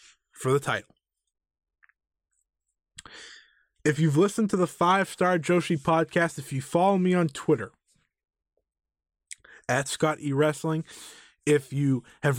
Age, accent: 20-39, American